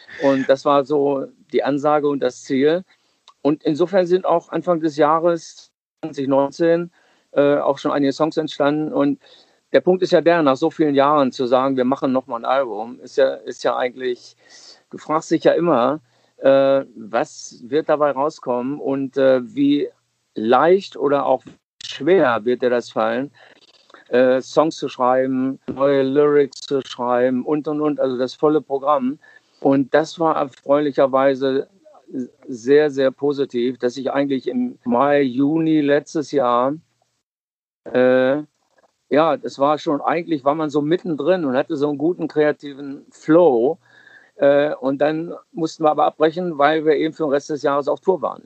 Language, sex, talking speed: German, male, 160 wpm